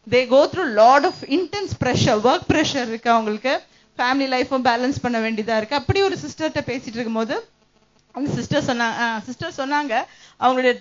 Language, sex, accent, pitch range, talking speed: Tamil, female, native, 235-300 Hz, 180 wpm